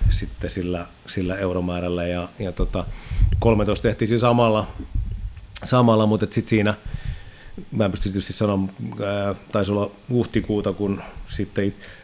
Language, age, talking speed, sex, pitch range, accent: Finnish, 30-49, 115 wpm, male, 95-105 Hz, native